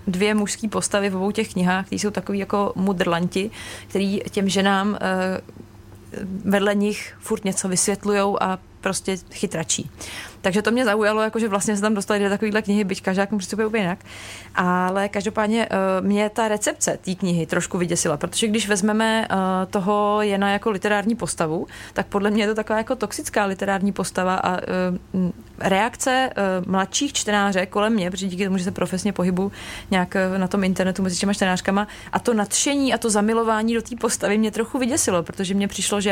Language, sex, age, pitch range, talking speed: Czech, female, 30-49, 190-215 Hz, 180 wpm